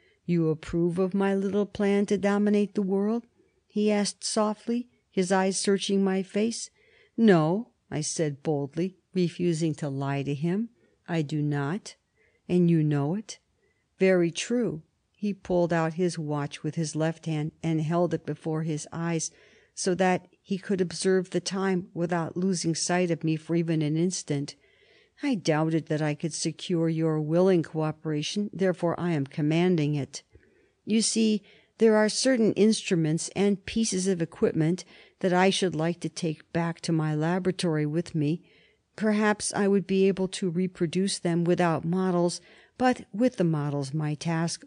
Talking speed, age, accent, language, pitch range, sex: 160 wpm, 50-69, American, English, 160-200 Hz, female